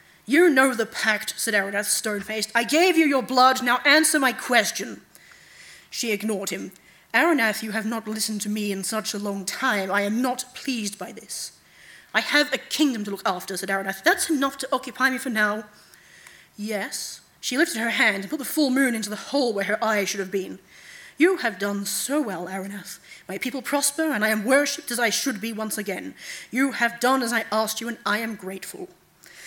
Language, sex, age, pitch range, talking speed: English, female, 30-49, 210-275 Hz, 210 wpm